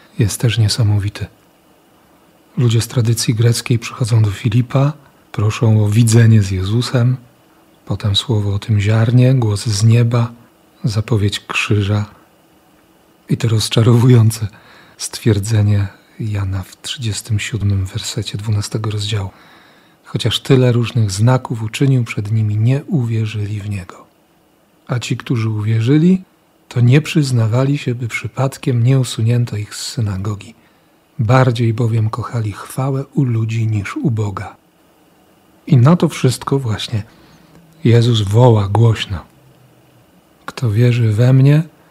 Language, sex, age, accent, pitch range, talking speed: Polish, male, 40-59, native, 110-130 Hz, 115 wpm